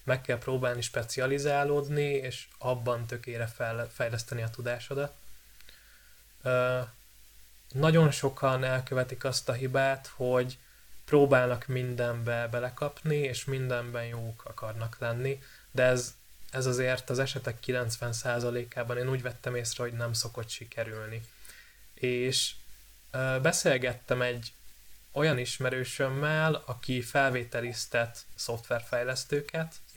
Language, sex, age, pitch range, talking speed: Hungarian, male, 20-39, 120-140 Hz, 100 wpm